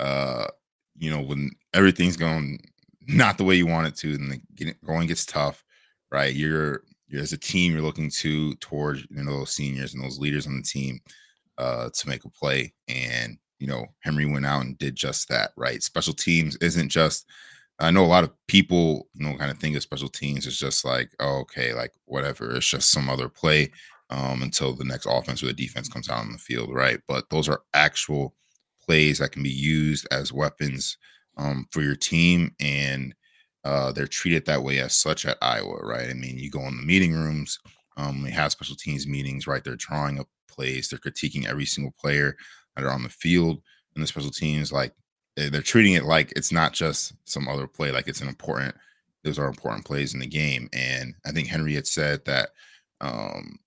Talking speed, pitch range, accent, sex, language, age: 210 wpm, 65-75 Hz, American, male, English, 20-39